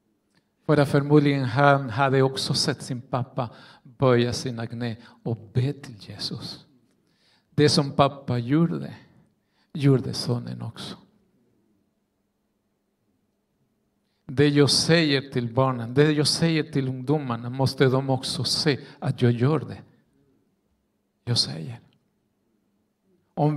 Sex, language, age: male, Swedish, 50-69